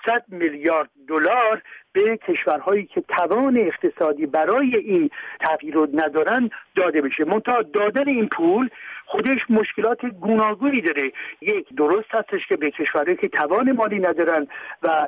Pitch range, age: 165-245 Hz, 60-79